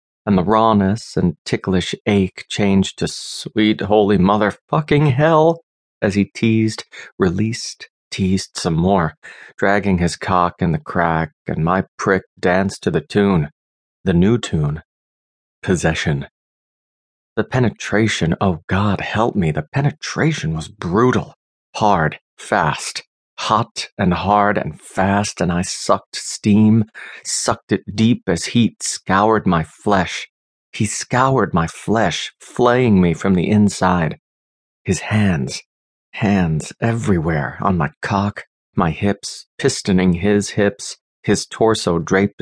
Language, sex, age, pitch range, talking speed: English, male, 30-49, 90-110 Hz, 125 wpm